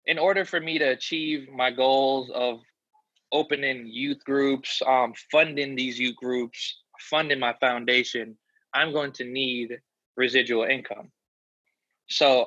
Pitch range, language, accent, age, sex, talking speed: 115-135 Hz, English, American, 20-39, male, 130 wpm